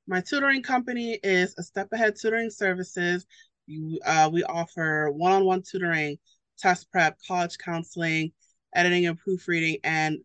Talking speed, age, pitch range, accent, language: 130 wpm, 30-49, 145-180 Hz, American, English